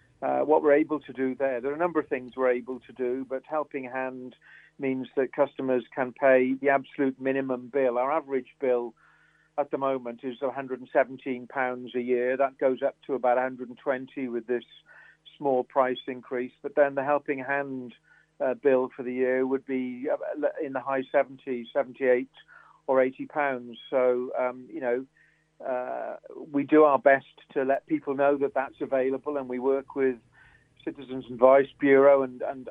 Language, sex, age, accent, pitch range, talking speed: English, male, 50-69, British, 130-140 Hz, 175 wpm